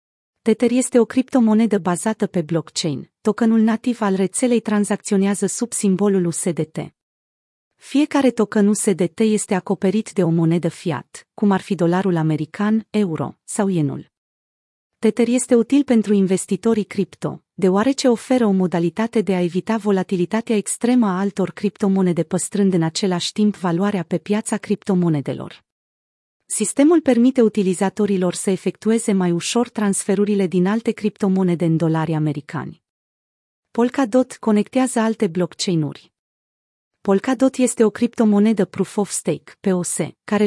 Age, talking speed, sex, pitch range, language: 40-59, 125 wpm, female, 180-220 Hz, Romanian